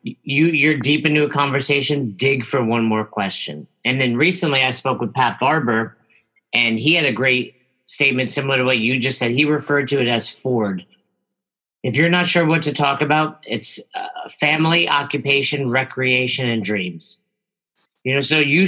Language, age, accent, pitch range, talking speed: English, 50-69, American, 125-150 Hz, 180 wpm